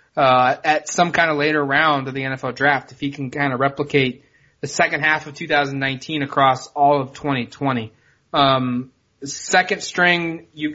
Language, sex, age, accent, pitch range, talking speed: English, male, 20-39, American, 135-155 Hz, 165 wpm